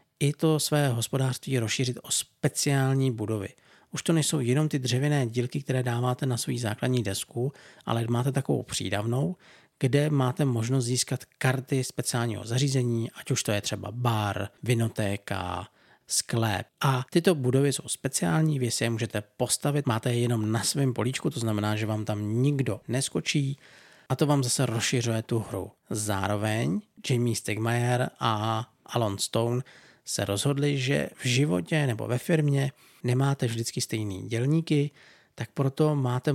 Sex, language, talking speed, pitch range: male, Czech, 150 wpm, 115-140 Hz